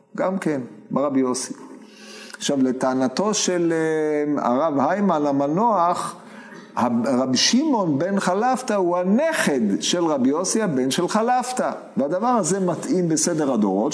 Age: 50-69